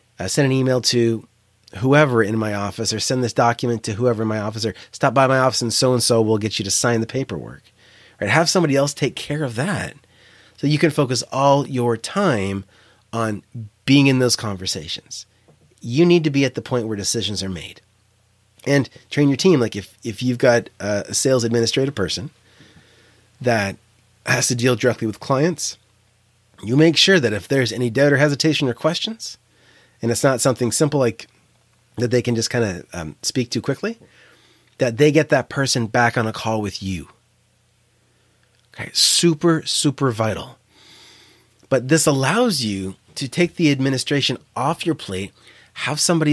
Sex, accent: male, American